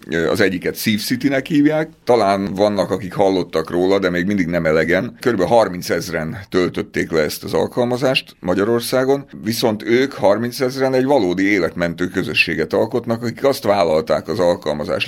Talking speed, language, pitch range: 145 wpm, Hungarian, 85-120 Hz